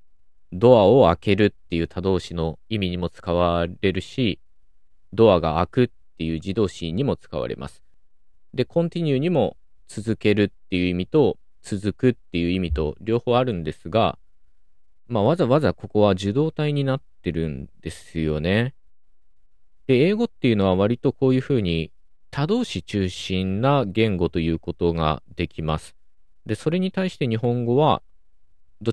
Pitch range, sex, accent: 80-115 Hz, male, native